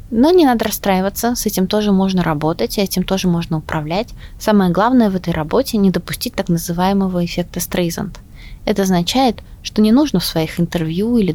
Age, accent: 20-39, native